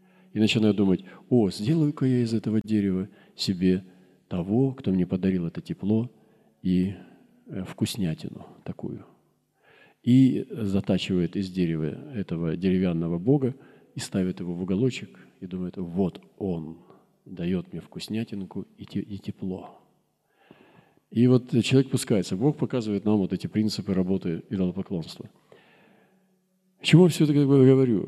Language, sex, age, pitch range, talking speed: Russian, male, 40-59, 90-125 Hz, 120 wpm